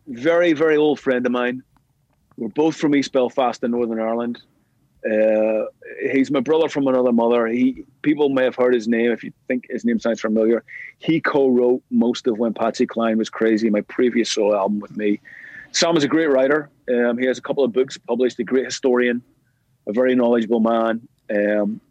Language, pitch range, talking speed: English, 120-150 Hz, 195 wpm